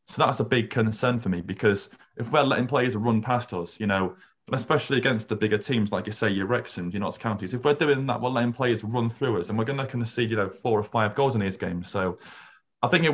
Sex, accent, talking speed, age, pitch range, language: male, British, 275 wpm, 20-39, 100-125 Hz, English